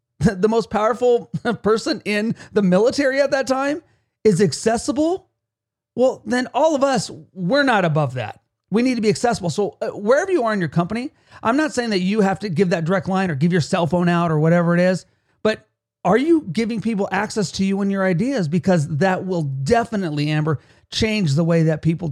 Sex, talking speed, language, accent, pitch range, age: male, 205 wpm, English, American, 160-215 Hz, 40-59